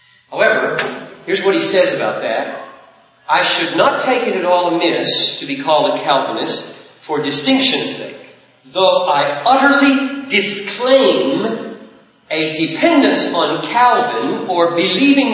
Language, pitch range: English, 130-190 Hz